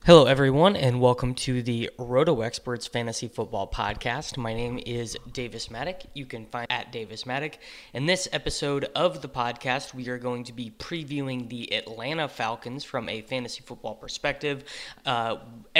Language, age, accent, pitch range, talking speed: English, 20-39, American, 120-145 Hz, 165 wpm